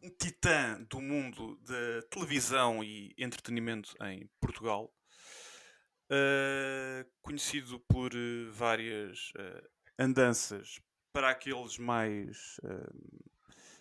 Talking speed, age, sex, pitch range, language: 85 wpm, 20-39, male, 115-135 Hz, English